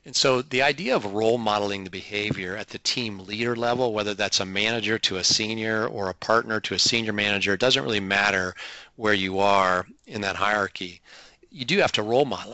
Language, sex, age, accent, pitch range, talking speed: English, male, 40-59, American, 100-120 Hz, 210 wpm